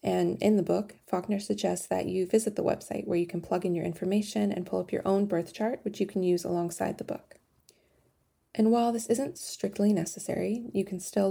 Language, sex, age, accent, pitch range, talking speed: English, female, 20-39, American, 175-215 Hz, 220 wpm